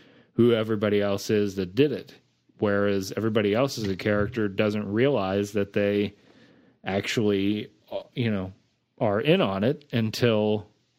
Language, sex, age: English, male, 30-49